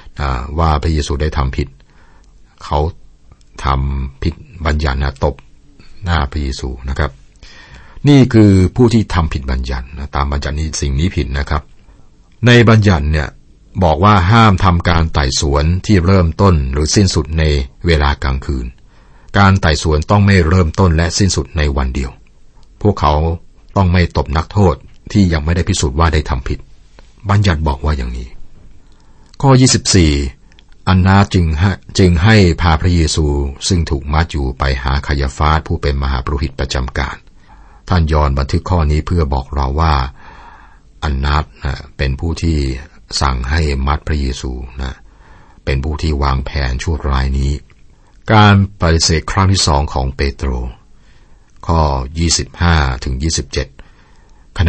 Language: Thai